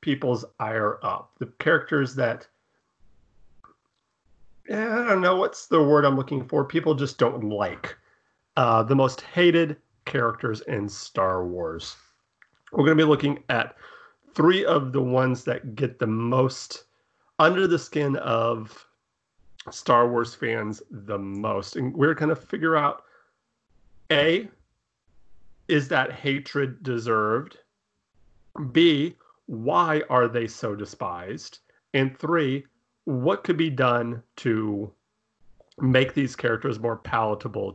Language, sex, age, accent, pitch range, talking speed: English, male, 40-59, American, 110-145 Hz, 125 wpm